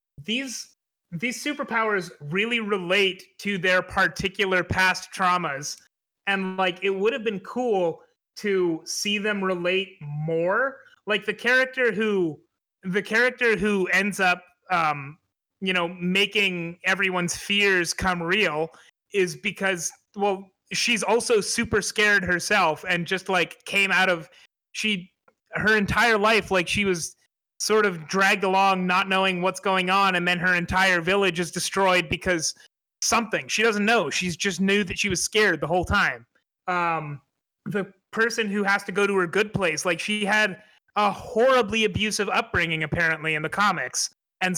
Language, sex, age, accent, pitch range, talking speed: English, male, 30-49, American, 180-210 Hz, 155 wpm